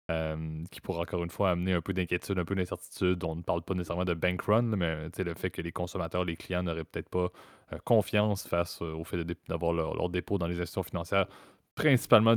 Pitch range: 85-95 Hz